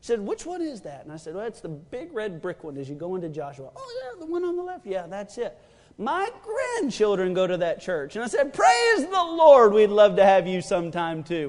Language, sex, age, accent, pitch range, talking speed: English, male, 40-59, American, 155-235 Hz, 255 wpm